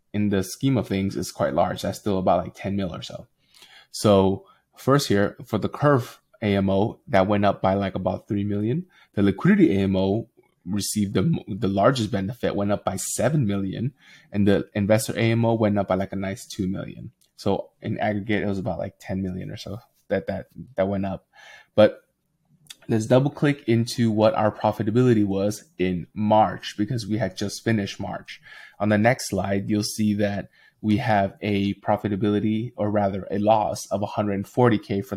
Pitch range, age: 100-115 Hz, 20-39